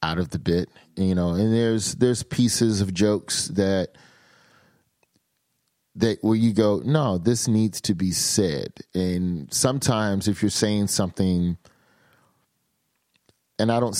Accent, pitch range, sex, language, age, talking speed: American, 85-110 Hz, male, English, 30-49, 135 wpm